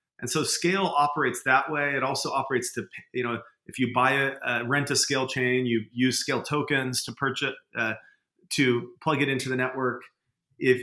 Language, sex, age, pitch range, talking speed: English, male, 40-59, 125-155 Hz, 195 wpm